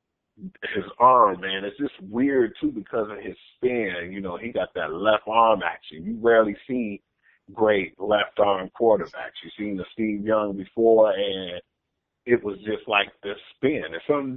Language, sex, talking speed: English, male, 165 wpm